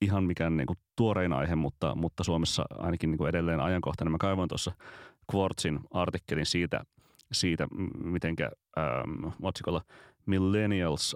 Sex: male